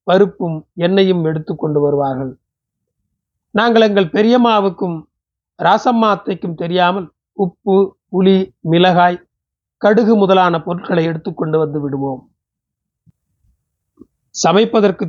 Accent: native